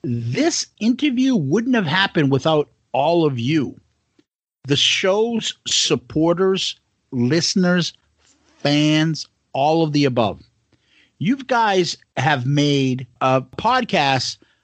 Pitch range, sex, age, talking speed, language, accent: 130-220 Hz, male, 50-69, 100 wpm, English, American